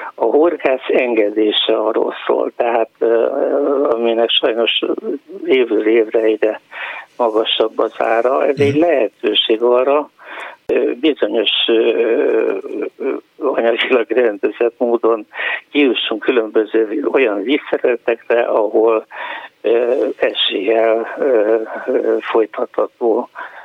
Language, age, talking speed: Hungarian, 60-79, 75 wpm